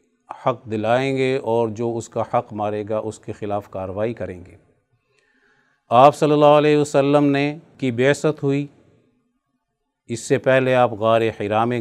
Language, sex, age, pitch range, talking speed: Urdu, male, 50-69, 110-125 Hz, 160 wpm